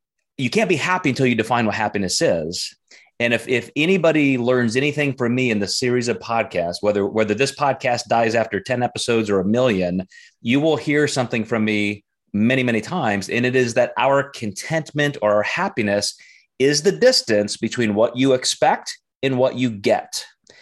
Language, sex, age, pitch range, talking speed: English, male, 30-49, 105-140 Hz, 185 wpm